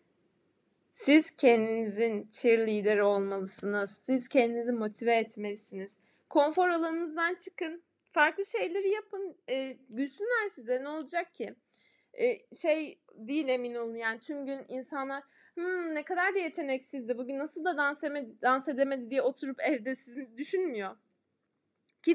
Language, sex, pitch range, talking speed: Turkish, female, 230-315 Hz, 125 wpm